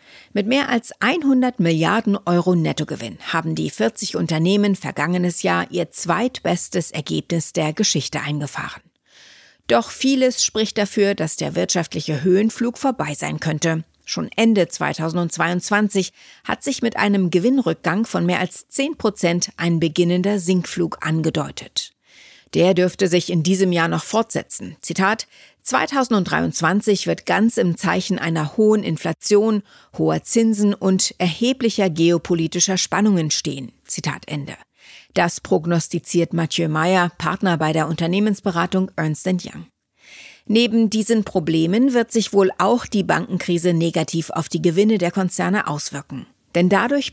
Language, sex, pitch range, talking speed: German, female, 165-210 Hz, 130 wpm